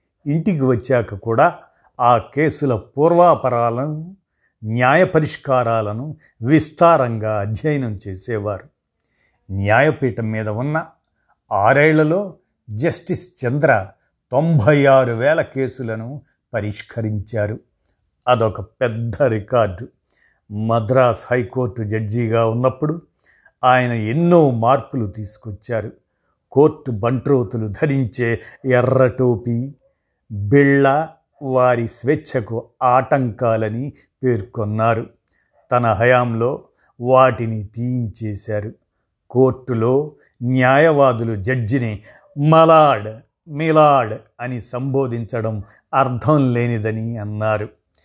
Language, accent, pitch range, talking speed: Telugu, native, 110-140 Hz, 70 wpm